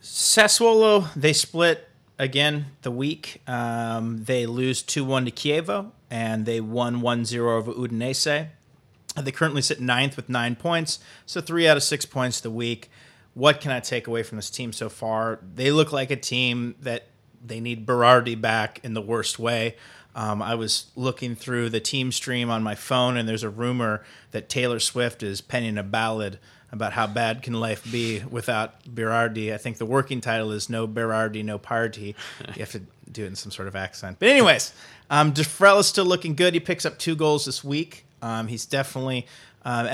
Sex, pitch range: male, 115-145 Hz